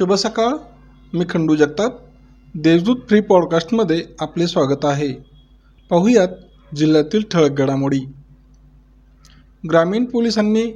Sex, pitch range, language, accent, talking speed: male, 145-195 Hz, Marathi, native, 90 wpm